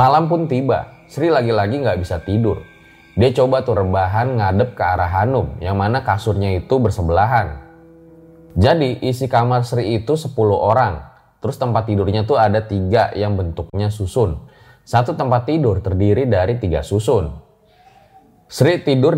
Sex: male